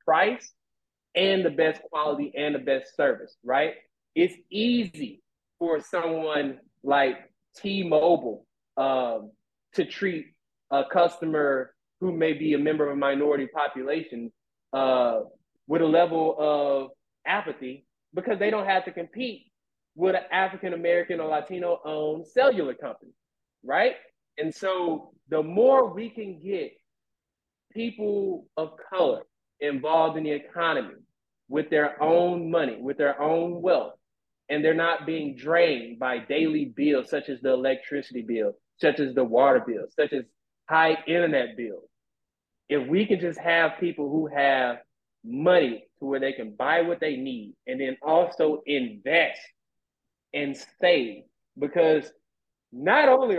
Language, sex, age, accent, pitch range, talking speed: English, male, 20-39, American, 140-185 Hz, 135 wpm